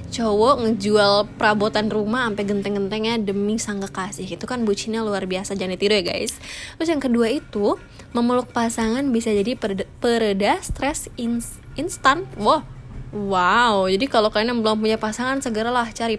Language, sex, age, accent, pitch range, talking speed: Indonesian, female, 20-39, native, 200-240 Hz, 150 wpm